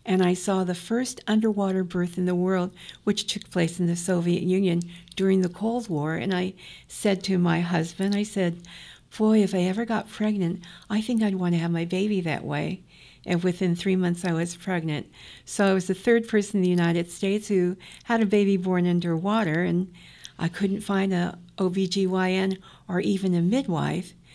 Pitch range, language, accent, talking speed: 175-200 Hz, English, American, 190 wpm